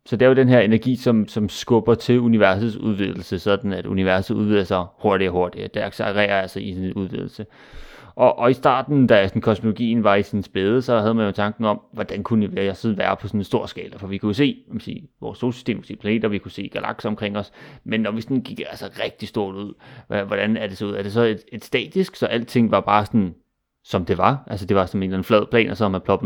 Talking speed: 265 wpm